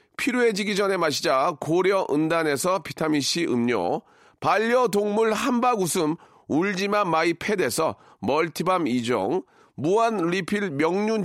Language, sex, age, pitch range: Korean, male, 40-59, 175-230 Hz